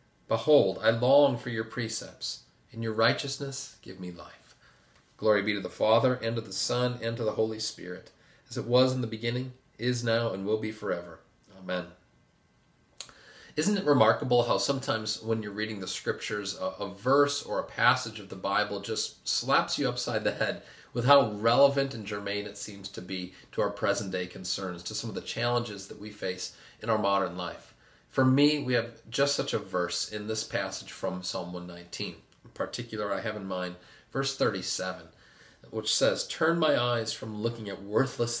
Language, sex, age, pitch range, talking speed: English, male, 40-59, 95-125 Hz, 185 wpm